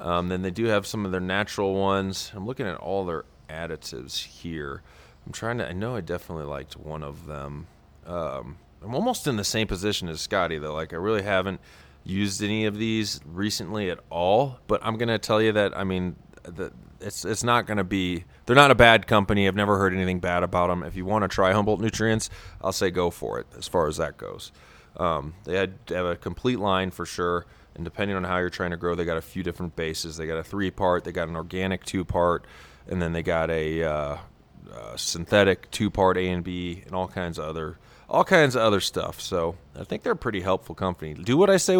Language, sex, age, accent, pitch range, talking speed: English, male, 30-49, American, 85-110 Hz, 230 wpm